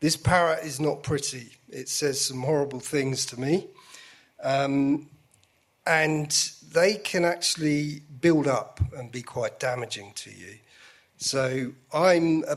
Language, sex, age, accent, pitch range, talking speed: English, male, 40-59, British, 130-170 Hz, 135 wpm